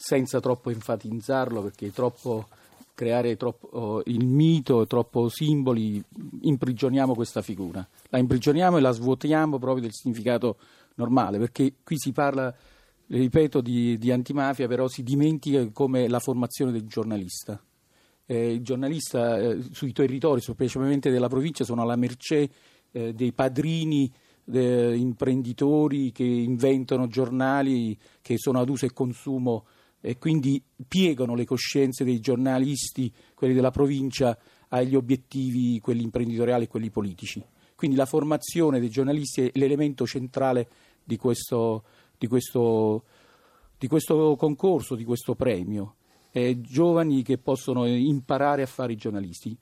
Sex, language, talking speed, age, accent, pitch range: male, Italian, 130 wpm, 40-59, native, 120-135 Hz